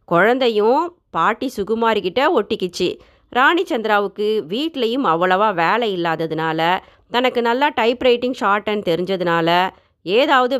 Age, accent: 30-49, native